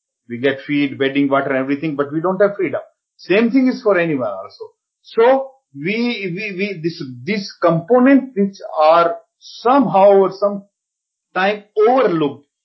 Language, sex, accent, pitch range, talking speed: English, male, Indian, 145-215 Hz, 145 wpm